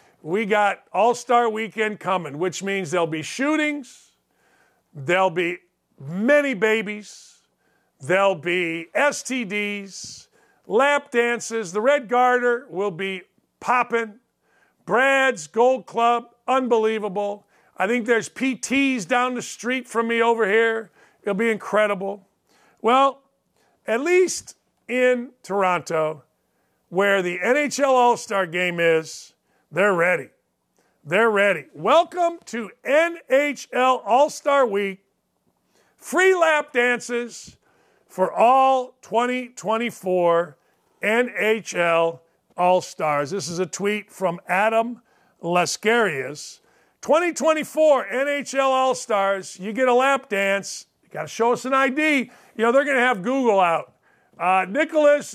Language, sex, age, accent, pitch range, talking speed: English, male, 50-69, American, 190-260 Hz, 110 wpm